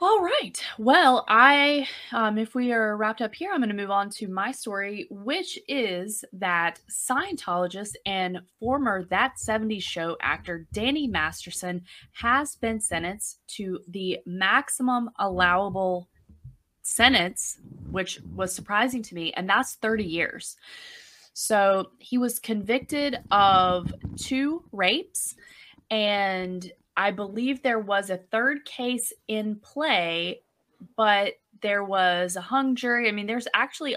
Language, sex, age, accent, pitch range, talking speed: English, female, 20-39, American, 175-230 Hz, 130 wpm